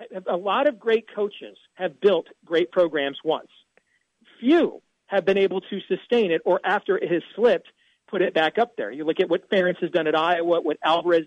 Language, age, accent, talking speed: English, 40-59, American, 200 wpm